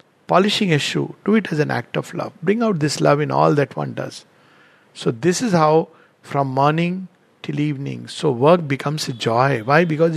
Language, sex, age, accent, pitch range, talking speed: English, male, 50-69, Indian, 150-205 Hz, 200 wpm